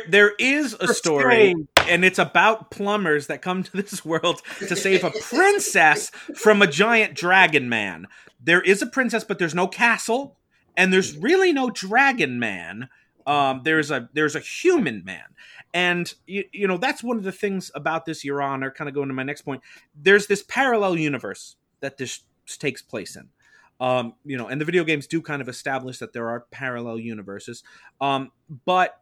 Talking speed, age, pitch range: 185 wpm, 30-49, 135-195 Hz